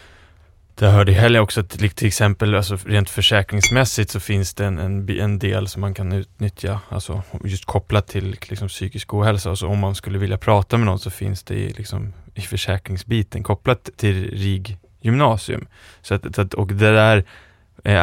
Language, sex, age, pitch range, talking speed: English, male, 20-39, 95-105 Hz, 170 wpm